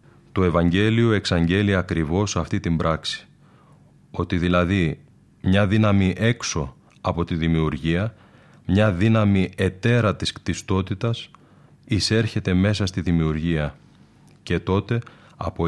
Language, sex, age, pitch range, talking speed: Greek, male, 30-49, 85-110 Hz, 105 wpm